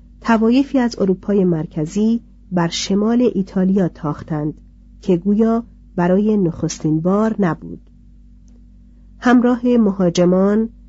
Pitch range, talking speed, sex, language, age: 180-230 Hz, 90 wpm, female, Persian, 40-59